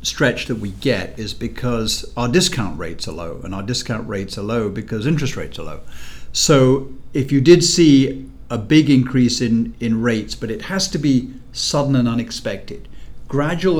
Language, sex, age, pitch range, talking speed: English, male, 50-69, 95-130 Hz, 185 wpm